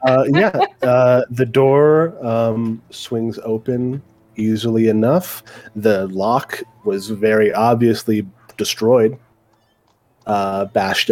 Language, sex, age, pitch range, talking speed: English, male, 30-49, 110-140 Hz, 95 wpm